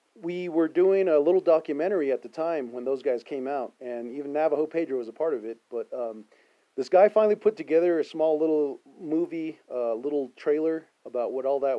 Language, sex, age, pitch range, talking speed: English, male, 40-59, 130-175 Hz, 210 wpm